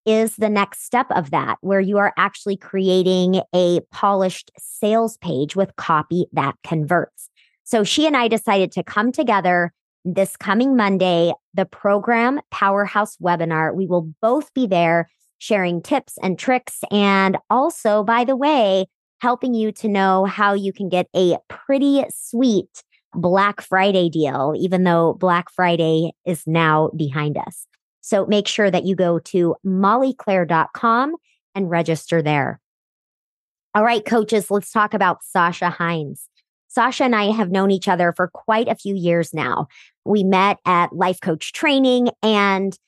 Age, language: 30-49, English